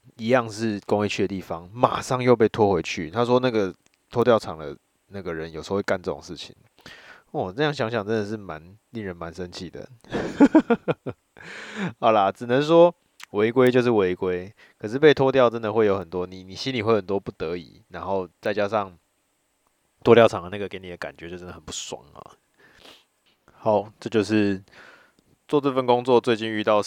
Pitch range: 95-125 Hz